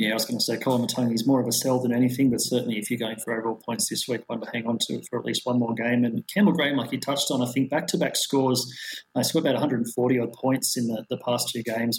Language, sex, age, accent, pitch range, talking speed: English, male, 30-49, Australian, 120-135 Hz, 300 wpm